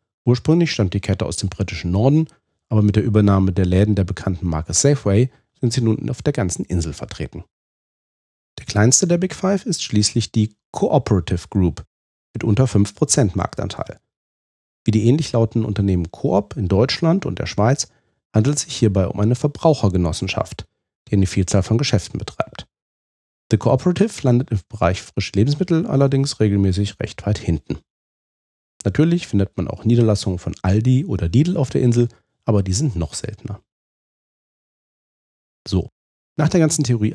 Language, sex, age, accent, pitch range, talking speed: German, male, 40-59, German, 95-135 Hz, 160 wpm